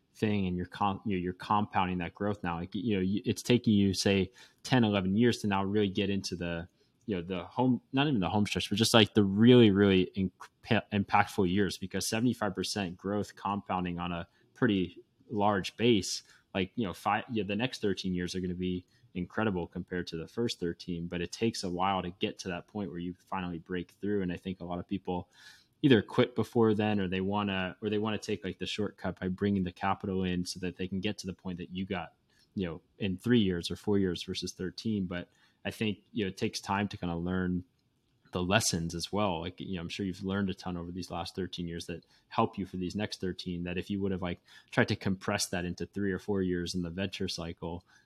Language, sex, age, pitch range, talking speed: English, male, 20-39, 90-105 Hz, 240 wpm